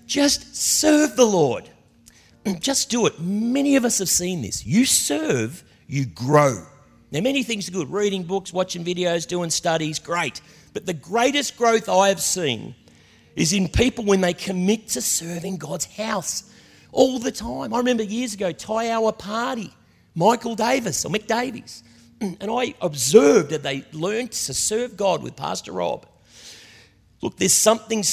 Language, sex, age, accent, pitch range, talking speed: English, male, 40-59, Australian, 150-225 Hz, 160 wpm